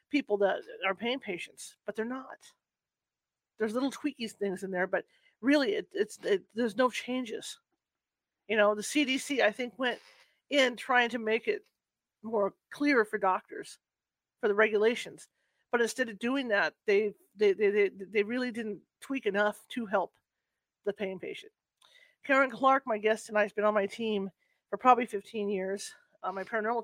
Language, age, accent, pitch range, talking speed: English, 40-59, American, 210-265 Hz, 170 wpm